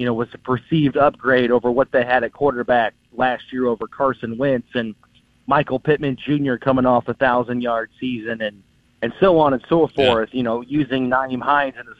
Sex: male